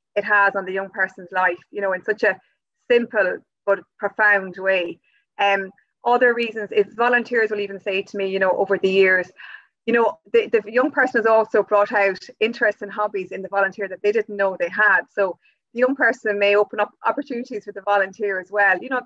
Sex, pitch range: female, 195-220 Hz